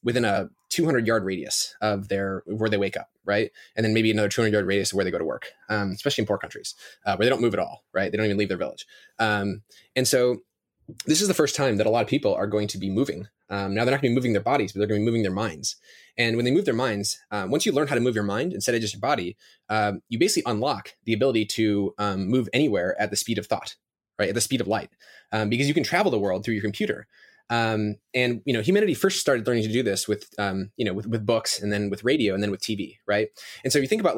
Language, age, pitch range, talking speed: English, 20-39, 100-120 Hz, 290 wpm